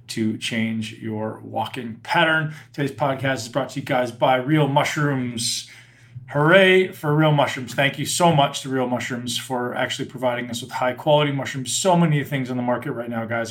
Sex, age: male, 20-39